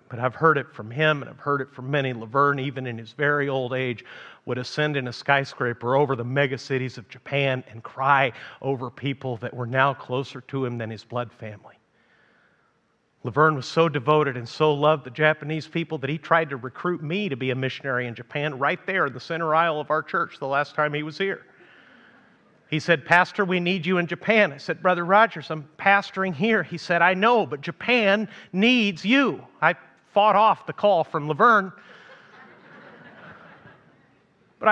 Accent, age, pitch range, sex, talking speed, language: American, 40-59, 140-205 Hz, male, 195 wpm, English